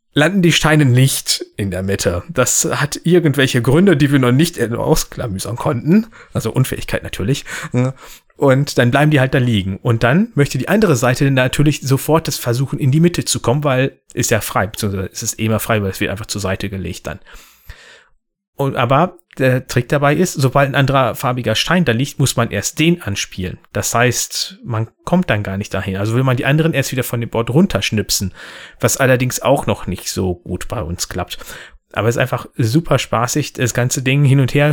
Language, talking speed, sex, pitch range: German, 205 wpm, male, 115-145 Hz